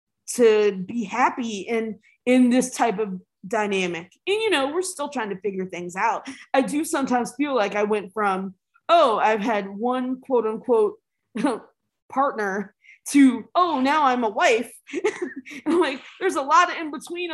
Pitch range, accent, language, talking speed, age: 225-330 Hz, American, English, 165 wpm, 20-39